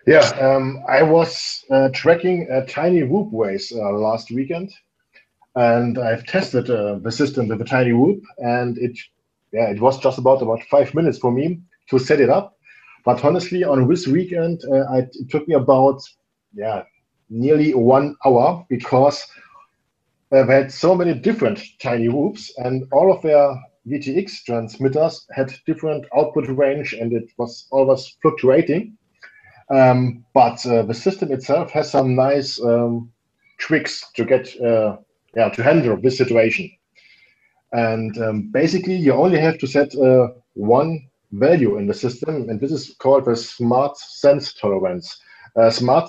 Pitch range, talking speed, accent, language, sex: 120-155 Hz, 155 wpm, German, English, male